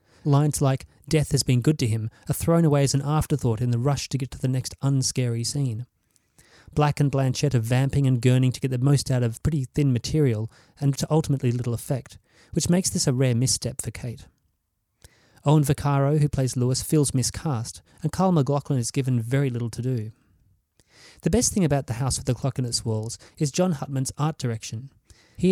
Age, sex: 30-49, male